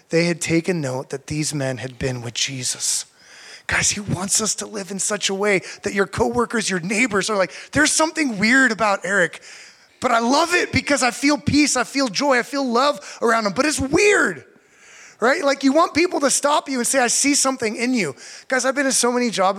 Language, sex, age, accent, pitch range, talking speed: English, male, 20-39, American, 170-250 Hz, 225 wpm